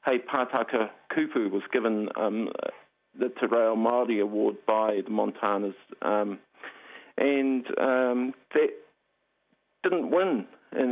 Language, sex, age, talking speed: English, male, 50-69, 115 wpm